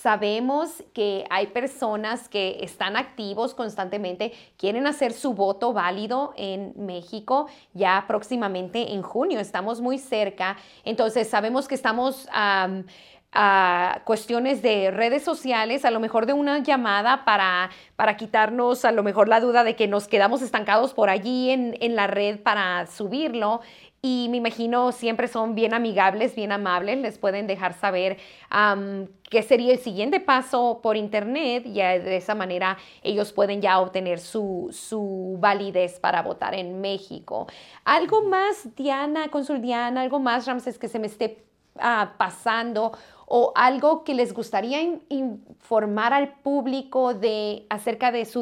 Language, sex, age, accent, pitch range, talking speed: English, female, 30-49, Mexican, 200-250 Hz, 145 wpm